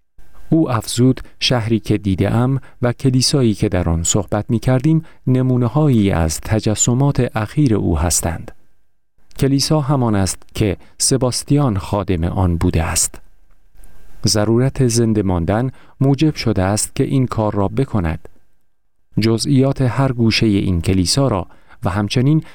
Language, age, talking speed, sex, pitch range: Persian, 40-59, 130 wpm, male, 95-130 Hz